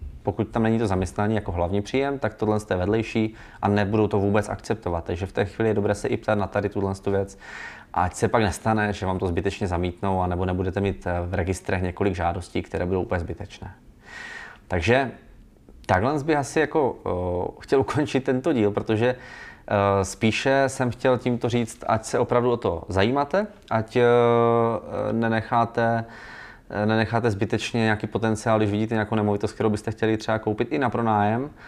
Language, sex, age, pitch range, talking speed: Czech, male, 20-39, 95-115 Hz, 165 wpm